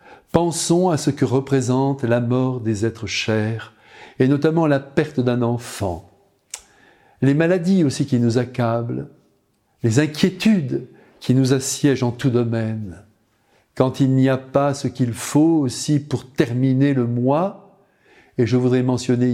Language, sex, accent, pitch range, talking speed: French, male, French, 115-145 Hz, 145 wpm